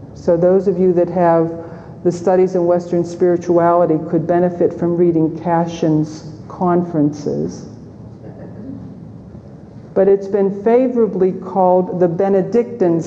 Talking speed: 110 wpm